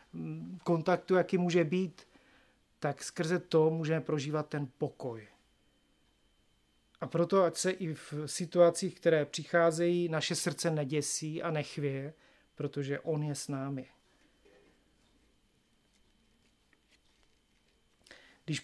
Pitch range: 150-175 Hz